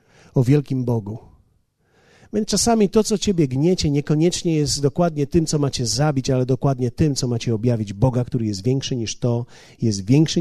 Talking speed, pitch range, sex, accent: 175 wpm, 105-140 Hz, male, native